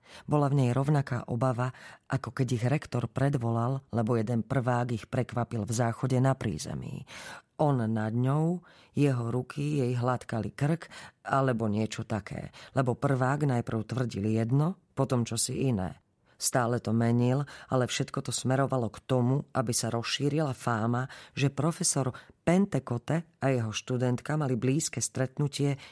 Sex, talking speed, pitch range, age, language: female, 140 wpm, 115-145 Hz, 40-59, Slovak